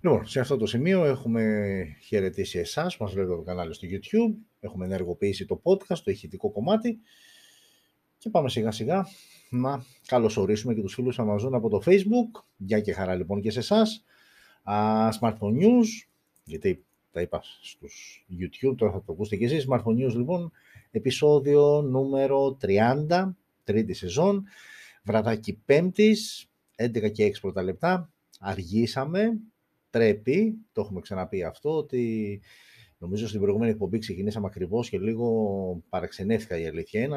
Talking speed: 140 wpm